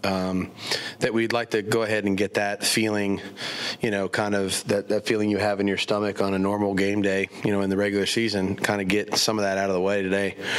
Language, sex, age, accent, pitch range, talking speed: English, male, 30-49, American, 95-105 Hz, 255 wpm